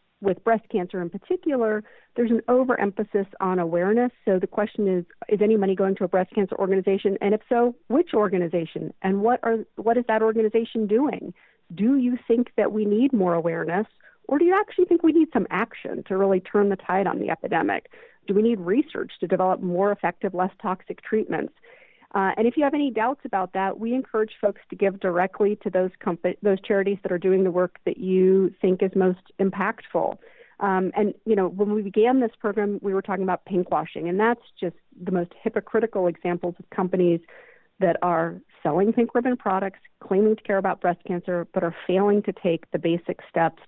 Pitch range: 180-225 Hz